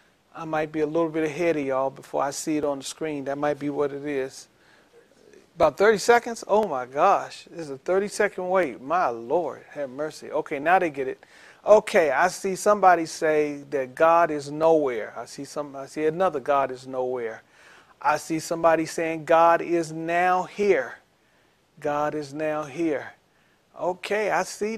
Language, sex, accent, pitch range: English, male, American, 155-210 Hz